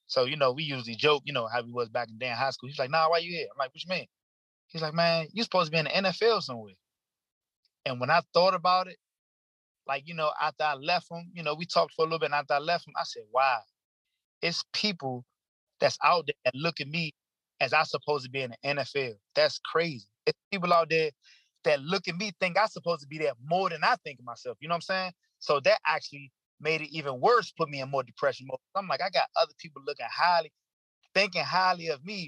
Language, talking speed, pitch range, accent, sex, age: English, 250 wpm, 130-170 Hz, American, male, 20-39